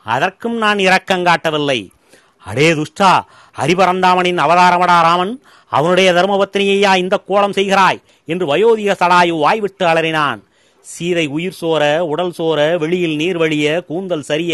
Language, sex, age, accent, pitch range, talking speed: Tamil, male, 40-59, native, 160-195 Hz, 115 wpm